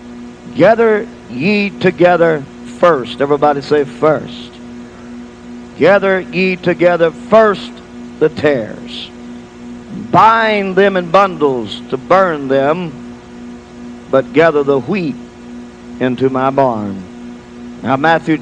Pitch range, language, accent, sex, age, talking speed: 120-180 Hz, English, American, male, 50-69, 95 wpm